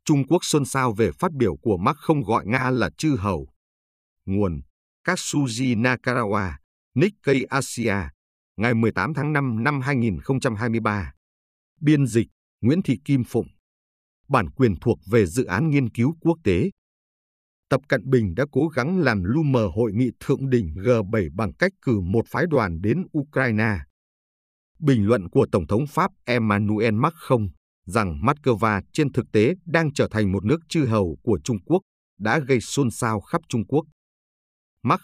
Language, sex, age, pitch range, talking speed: Vietnamese, male, 50-69, 100-140 Hz, 160 wpm